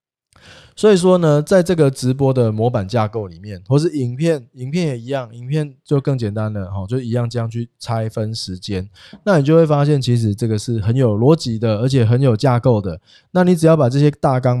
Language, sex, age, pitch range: Chinese, male, 20-39, 110-150 Hz